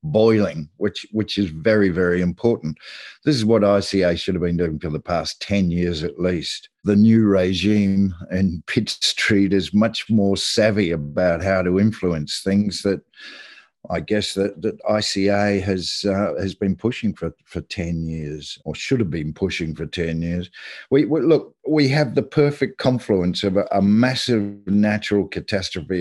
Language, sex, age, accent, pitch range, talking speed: English, male, 50-69, Australian, 90-110 Hz, 170 wpm